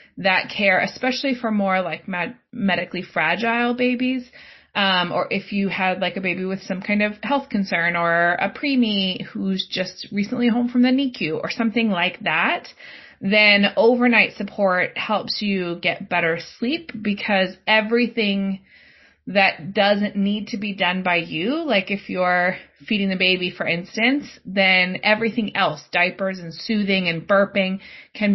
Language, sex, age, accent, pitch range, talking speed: English, female, 30-49, American, 180-225 Hz, 155 wpm